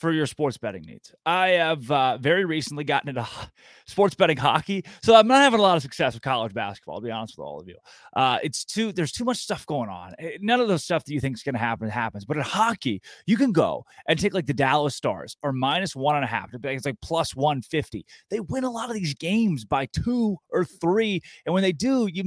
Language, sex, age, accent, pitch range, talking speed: English, male, 20-39, American, 120-170 Hz, 250 wpm